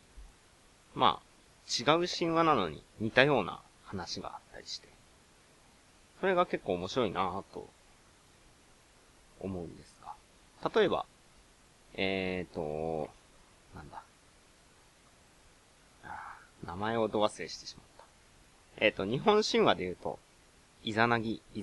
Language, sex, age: Japanese, male, 30-49